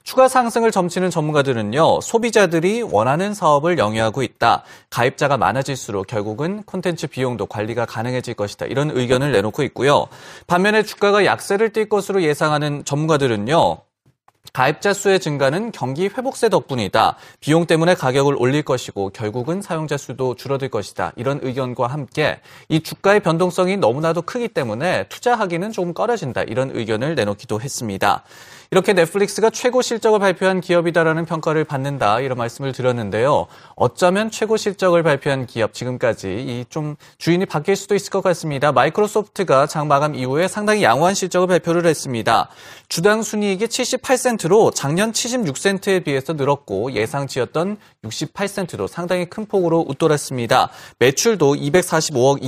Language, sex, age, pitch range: Korean, male, 30-49, 135-195 Hz